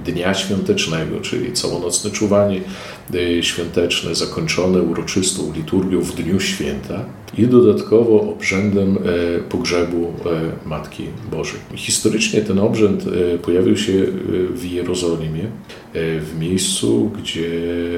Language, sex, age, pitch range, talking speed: Polish, male, 50-69, 85-95 Hz, 95 wpm